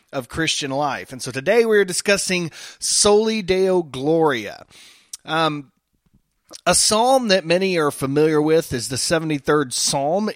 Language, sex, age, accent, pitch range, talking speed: English, male, 30-49, American, 130-170 Hz, 135 wpm